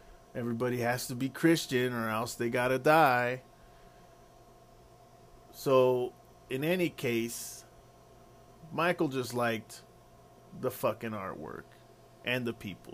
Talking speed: 110 wpm